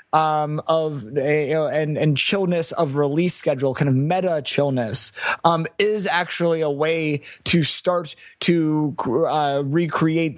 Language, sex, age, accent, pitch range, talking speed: English, male, 20-39, American, 145-170 Hz, 145 wpm